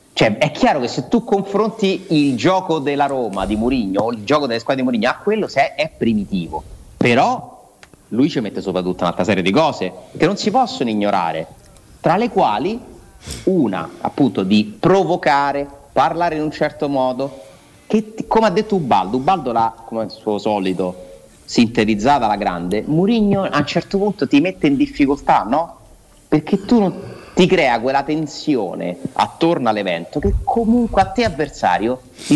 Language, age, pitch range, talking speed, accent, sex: Italian, 30-49, 115-185 Hz, 170 wpm, native, male